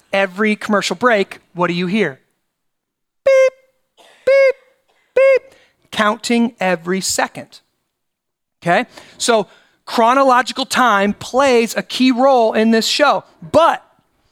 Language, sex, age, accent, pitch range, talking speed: English, male, 30-49, American, 200-265 Hz, 105 wpm